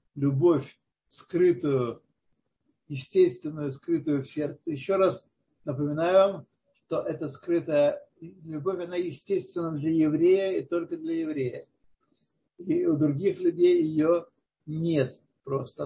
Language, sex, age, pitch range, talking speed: Russian, male, 60-79, 150-185 Hz, 110 wpm